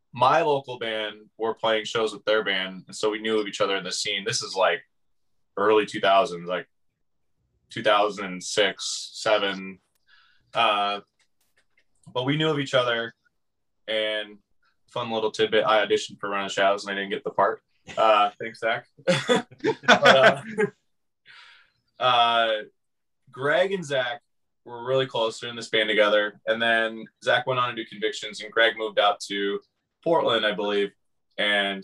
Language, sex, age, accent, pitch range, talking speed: English, male, 20-39, American, 100-120 Hz, 155 wpm